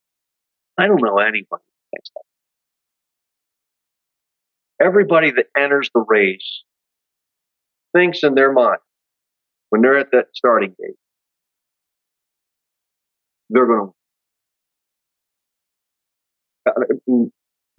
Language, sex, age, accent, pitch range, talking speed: English, male, 40-59, American, 110-145 Hz, 85 wpm